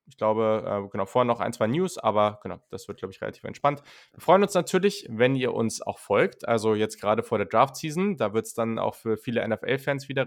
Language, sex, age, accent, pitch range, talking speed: German, male, 20-39, German, 110-135 Hz, 240 wpm